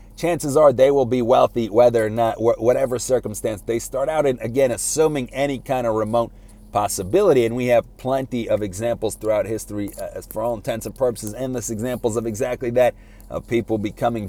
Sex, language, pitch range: male, English, 105-130 Hz